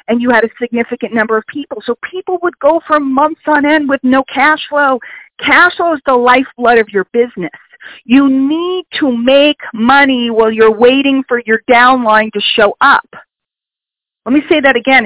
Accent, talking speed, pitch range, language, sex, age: American, 185 wpm, 220-285 Hz, English, female, 40-59